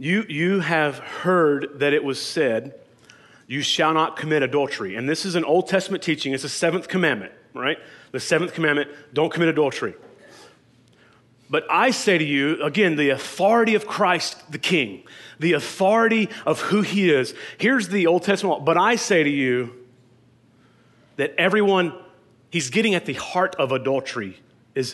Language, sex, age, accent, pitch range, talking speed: English, male, 30-49, American, 140-185 Hz, 165 wpm